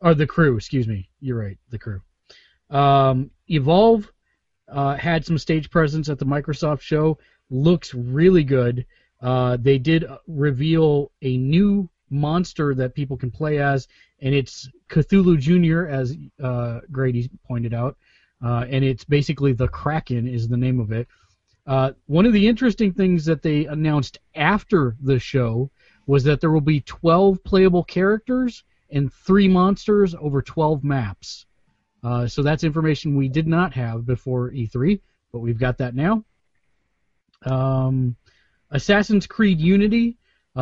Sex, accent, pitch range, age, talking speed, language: male, American, 130-170 Hz, 30-49, 150 wpm, English